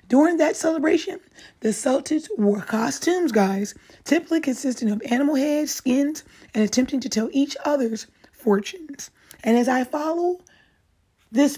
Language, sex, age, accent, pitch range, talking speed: English, female, 30-49, American, 220-290 Hz, 135 wpm